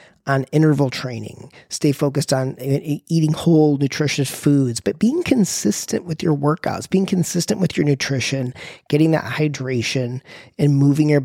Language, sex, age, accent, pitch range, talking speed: English, male, 40-59, American, 135-155 Hz, 145 wpm